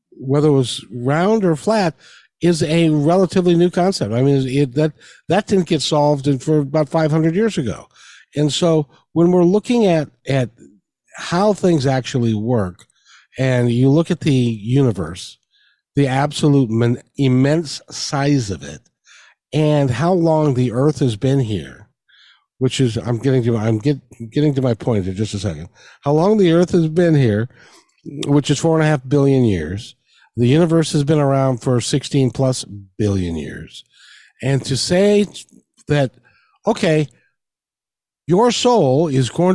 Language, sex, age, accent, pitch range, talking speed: English, male, 50-69, American, 130-175 Hz, 160 wpm